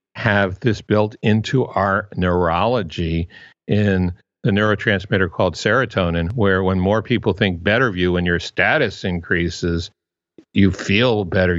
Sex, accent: male, American